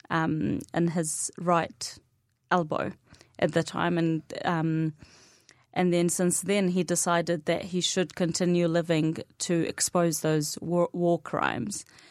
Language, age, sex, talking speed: Arabic, 30-49, female, 130 wpm